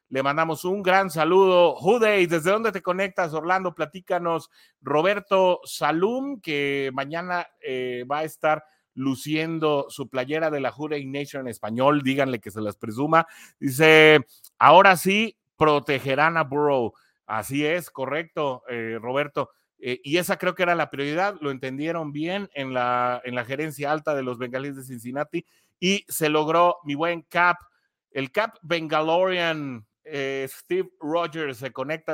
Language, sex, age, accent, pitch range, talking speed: Spanish, male, 30-49, Mexican, 130-170 Hz, 150 wpm